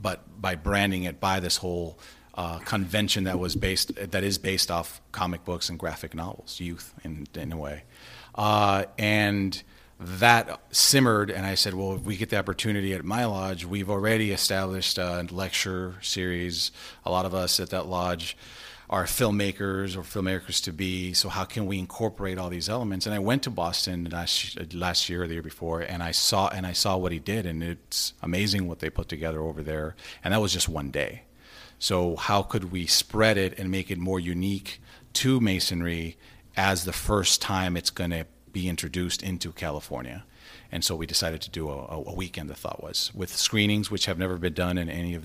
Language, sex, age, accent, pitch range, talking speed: English, male, 40-59, American, 85-100 Hz, 195 wpm